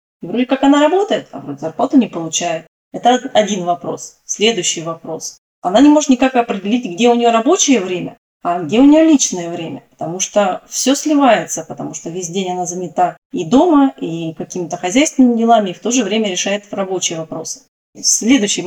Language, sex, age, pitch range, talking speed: Russian, female, 20-39, 180-245 Hz, 180 wpm